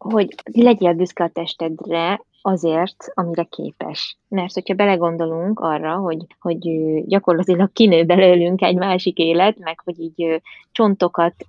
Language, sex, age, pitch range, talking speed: Hungarian, female, 20-39, 165-195 Hz, 125 wpm